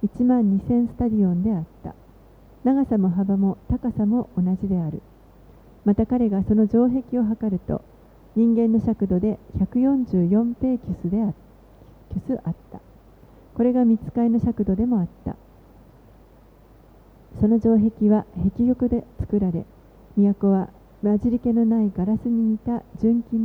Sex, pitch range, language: female, 185-230 Hz, Japanese